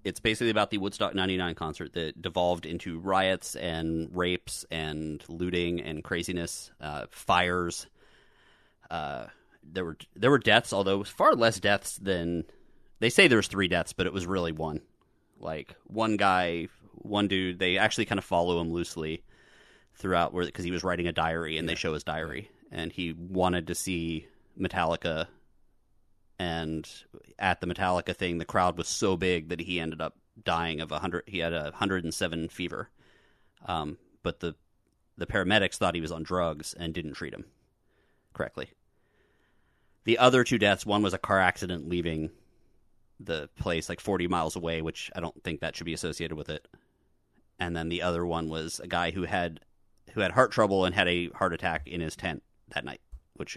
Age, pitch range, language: 30-49, 80-95 Hz, English